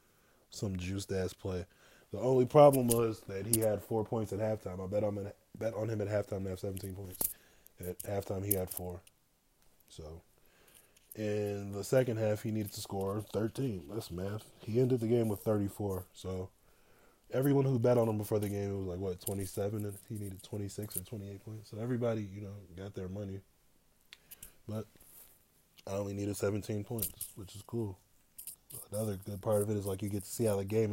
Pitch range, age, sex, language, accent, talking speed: 95-110 Hz, 20-39, male, English, American, 195 wpm